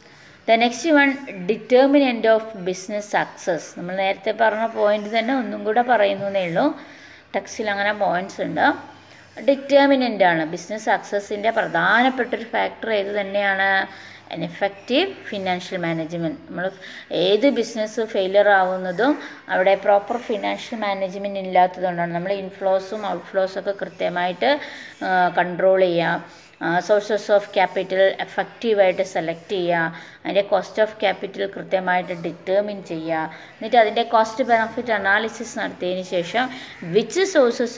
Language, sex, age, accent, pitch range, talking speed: Malayalam, female, 20-39, native, 185-235 Hz, 110 wpm